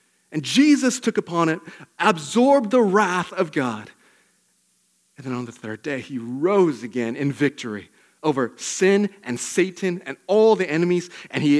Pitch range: 120-150 Hz